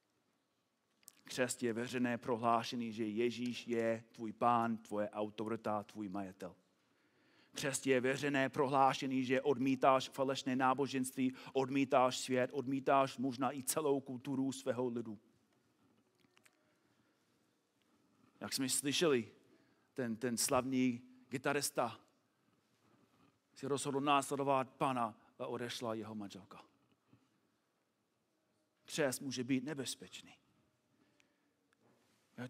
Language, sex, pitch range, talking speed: Czech, male, 115-135 Hz, 90 wpm